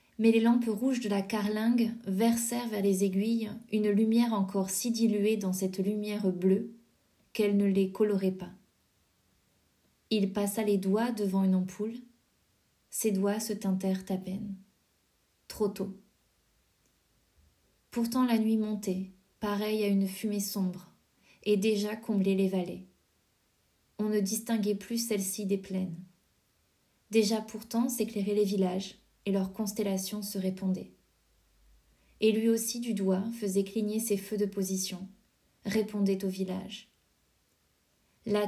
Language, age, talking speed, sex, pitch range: French, 20-39, 135 wpm, female, 190-215 Hz